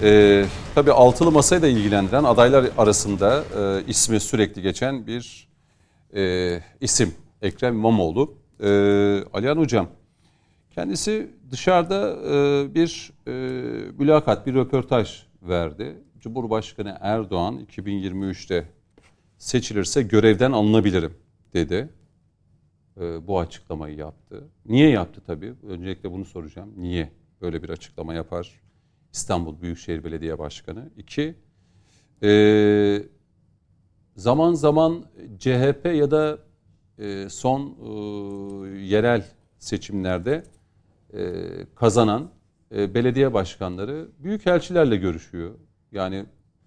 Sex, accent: male, native